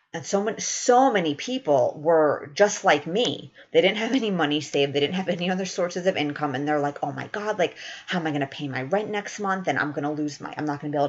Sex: female